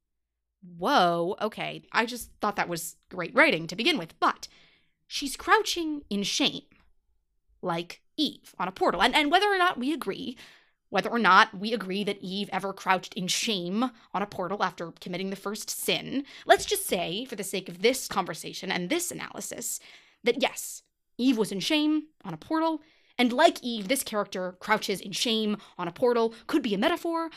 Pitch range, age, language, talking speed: 185-295 Hz, 20-39, English, 185 wpm